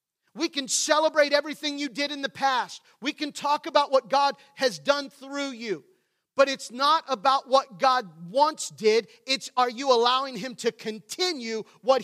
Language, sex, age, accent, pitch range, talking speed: English, male, 40-59, American, 235-290 Hz, 175 wpm